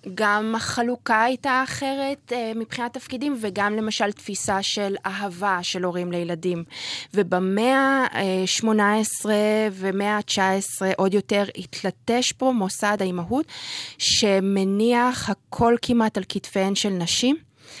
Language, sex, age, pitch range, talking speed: Hebrew, female, 20-39, 180-215 Hz, 110 wpm